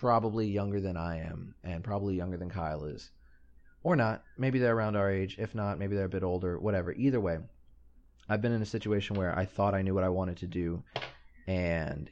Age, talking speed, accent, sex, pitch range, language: 30-49, 220 wpm, American, male, 80-100 Hz, English